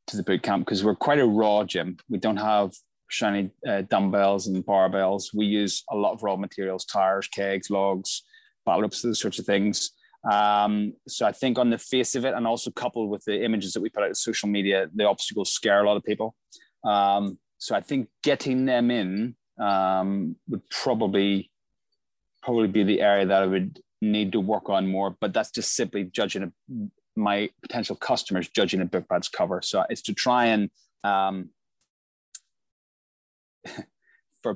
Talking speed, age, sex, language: 180 wpm, 20-39, male, English